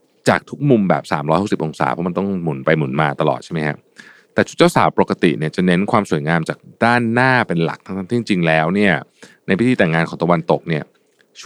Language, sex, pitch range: Thai, male, 80-100 Hz